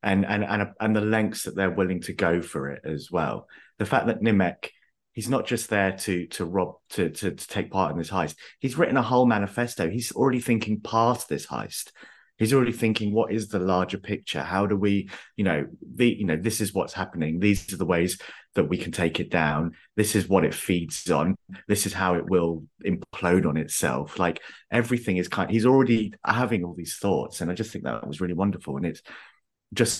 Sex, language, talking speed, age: male, English, 220 wpm, 30-49